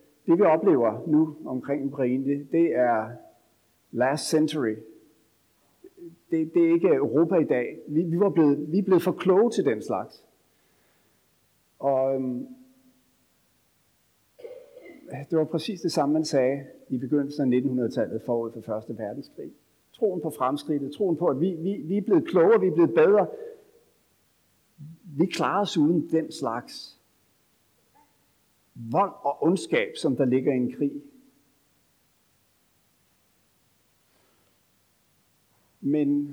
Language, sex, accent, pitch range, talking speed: Danish, male, native, 135-190 Hz, 125 wpm